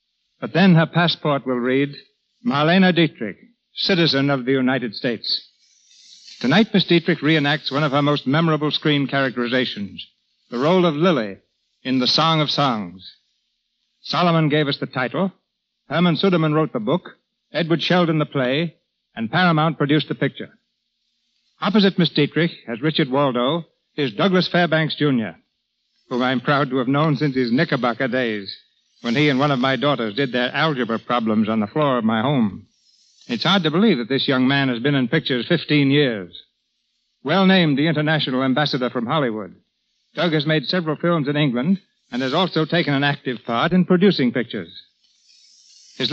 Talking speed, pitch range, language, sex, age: 165 wpm, 130-175 Hz, English, male, 60-79